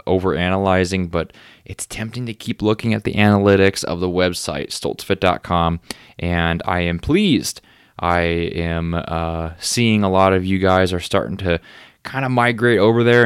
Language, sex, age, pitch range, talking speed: English, male, 20-39, 90-110 Hz, 165 wpm